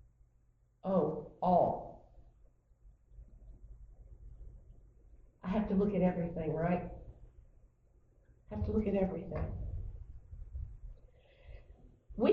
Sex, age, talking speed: female, 50-69, 80 wpm